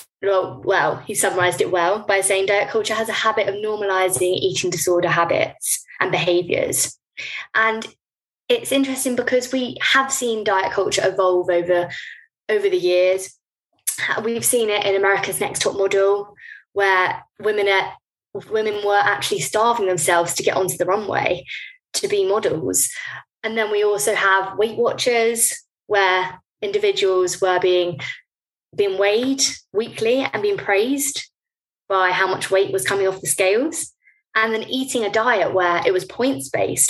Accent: British